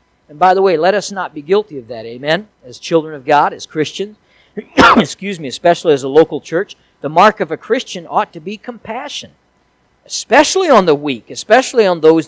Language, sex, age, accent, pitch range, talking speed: English, male, 50-69, American, 160-225 Hz, 200 wpm